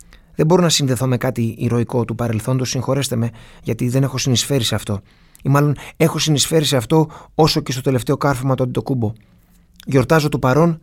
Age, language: 20-39, Greek